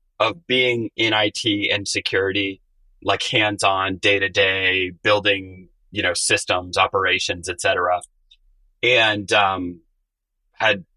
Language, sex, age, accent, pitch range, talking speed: English, male, 30-49, American, 90-115 Hz, 105 wpm